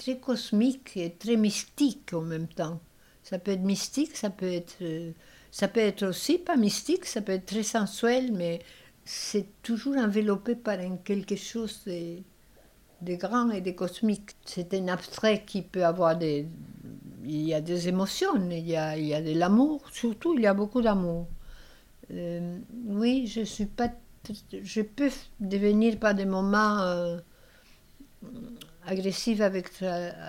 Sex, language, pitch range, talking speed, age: female, French, 175-215 Hz, 155 wpm, 60-79